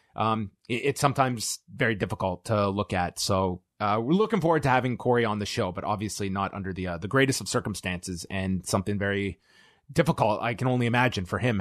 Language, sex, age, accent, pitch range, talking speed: English, male, 30-49, American, 105-140 Hz, 205 wpm